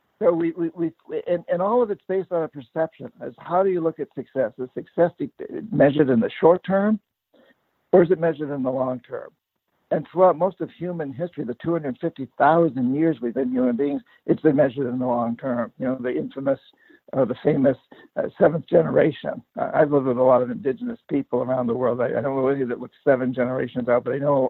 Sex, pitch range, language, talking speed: male, 130-180 Hz, English, 230 wpm